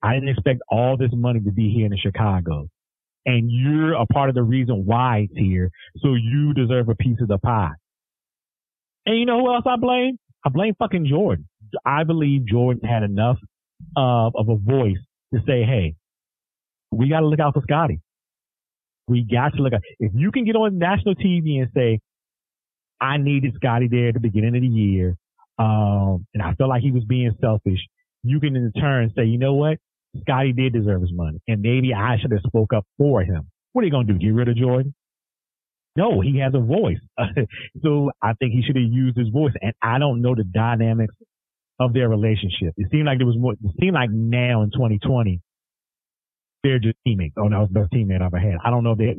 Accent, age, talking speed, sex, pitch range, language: American, 40-59, 215 wpm, male, 105-135 Hz, English